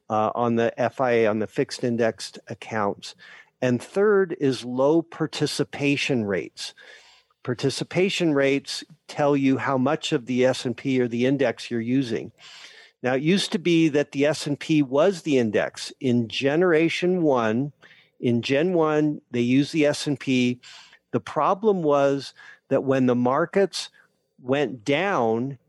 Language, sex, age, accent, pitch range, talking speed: English, male, 50-69, American, 125-155 Hz, 140 wpm